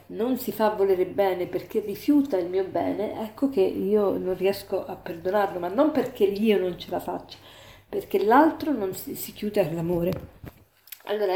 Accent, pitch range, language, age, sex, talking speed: native, 185-225 Hz, Italian, 40-59, female, 170 wpm